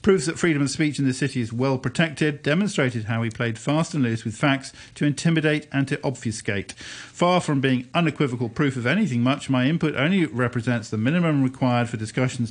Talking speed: 200 wpm